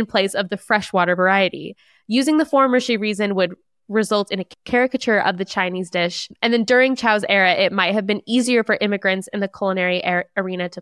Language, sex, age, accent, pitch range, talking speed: English, female, 20-39, American, 185-225 Hz, 200 wpm